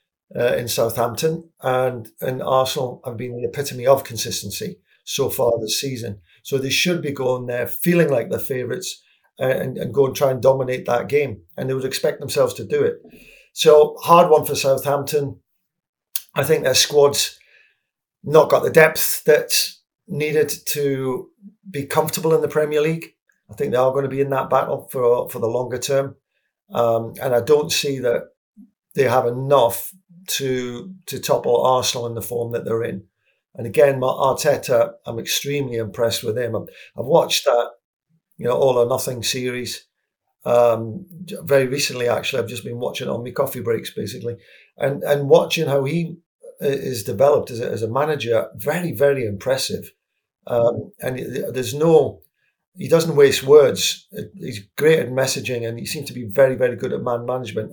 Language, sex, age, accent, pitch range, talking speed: English, male, 50-69, British, 120-160 Hz, 175 wpm